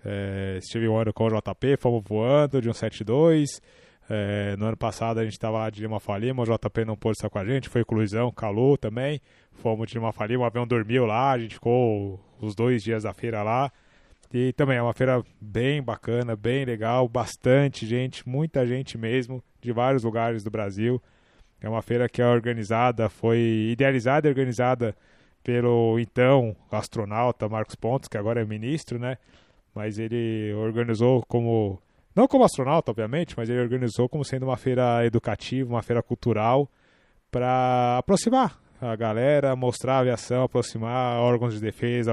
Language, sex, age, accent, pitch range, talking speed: Portuguese, male, 20-39, Brazilian, 110-130 Hz, 170 wpm